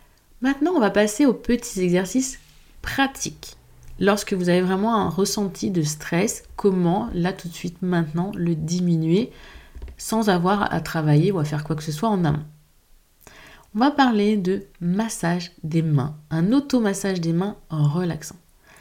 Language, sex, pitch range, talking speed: French, female, 155-215 Hz, 160 wpm